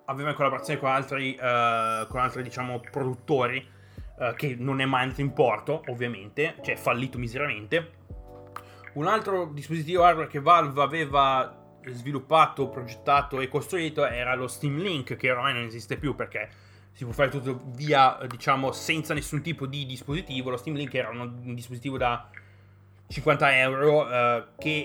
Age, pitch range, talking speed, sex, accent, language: 20-39, 120-150 Hz, 155 wpm, male, native, Italian